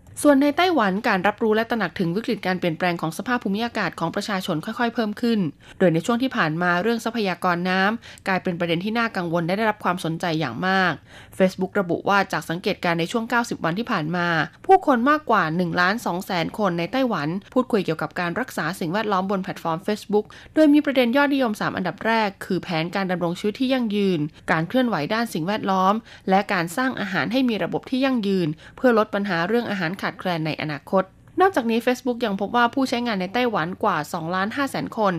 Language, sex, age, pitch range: Thai, female, 20-39, 175-230 Hz